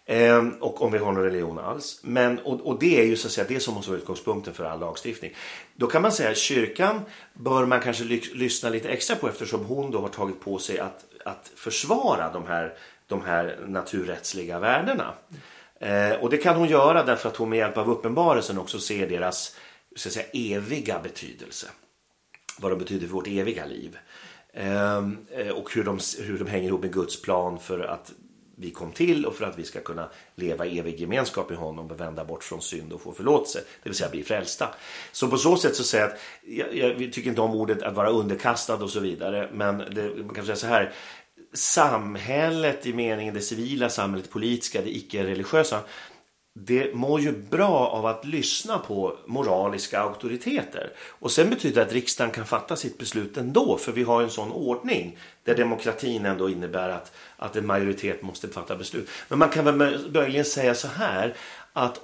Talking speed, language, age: 200 wpm, Swedish, 30-49